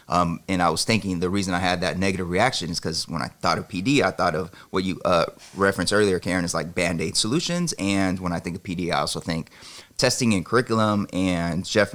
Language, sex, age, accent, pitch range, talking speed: English, male, 30-49, American, 90-100 Hz, 230 wpm